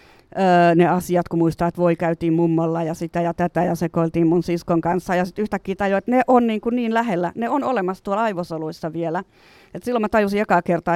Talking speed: 220 wpm